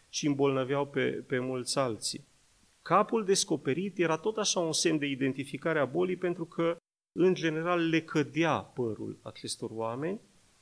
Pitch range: 130-170 Hz